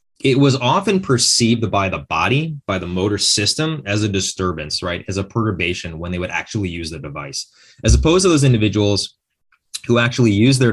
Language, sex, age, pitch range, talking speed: English, male, 20-39, 90-120 Hz, 190 wpm